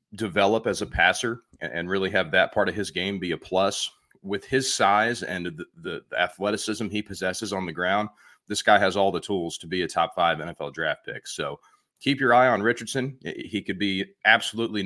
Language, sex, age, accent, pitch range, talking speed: English, male, 40-59, American, 95-120 Hz, 205 wpm